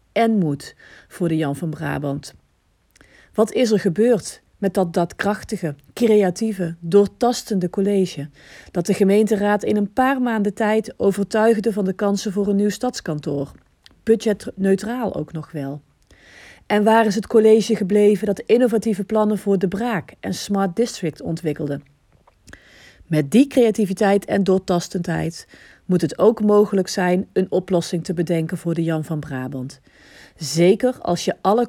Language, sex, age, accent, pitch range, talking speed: Dutch, female, 40-59, Dutch, 165-215 Hz, 145 wpm